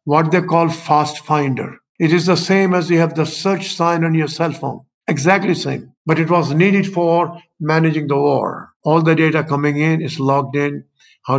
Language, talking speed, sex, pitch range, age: English, 205 wpm, male, 145-175 Hz, 50-69